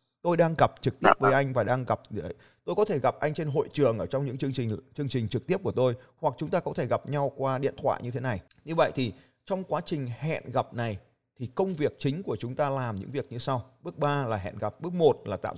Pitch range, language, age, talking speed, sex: 125-170 Hz, Vietnamese, 20-39, 275 wpm, male